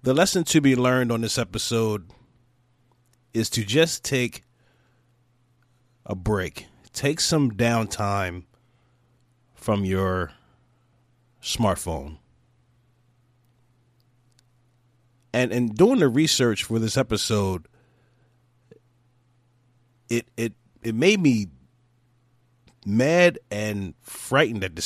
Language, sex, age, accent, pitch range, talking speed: English, male, 30-49, American, 110-125 Hz, 90 wpm